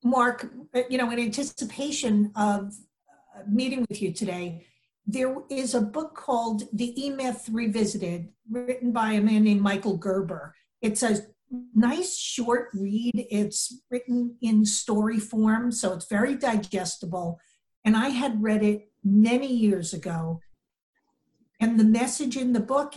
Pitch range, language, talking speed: 205-245 Hz, English, 140 wpm